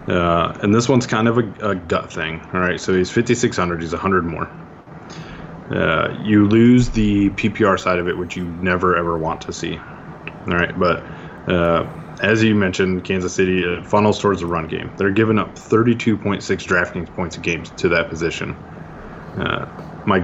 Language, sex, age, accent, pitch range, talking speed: English, male, 20-39, American, 90-110 Hz, 180 wpm